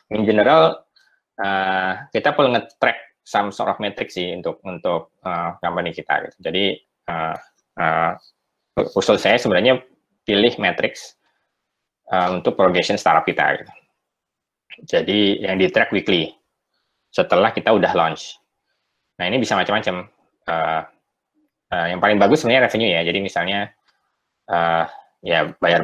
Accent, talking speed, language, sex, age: native, 130 wpm, Indonesian, male, 20-39